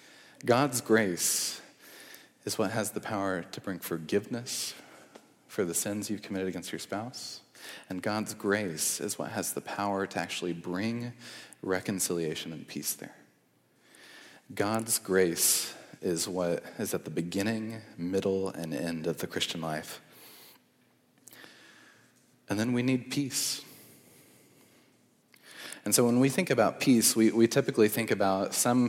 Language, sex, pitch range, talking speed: English, male, 95-115 Hz, 135 wpm